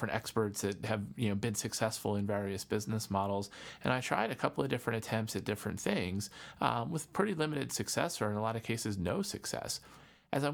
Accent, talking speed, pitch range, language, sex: American, 210 wpm, 105-120 Hz, English, male